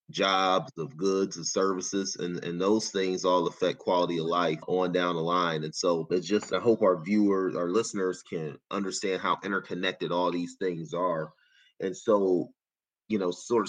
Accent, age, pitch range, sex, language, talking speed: American, 30-49, 90-100 Hz, male, English, 180 wpm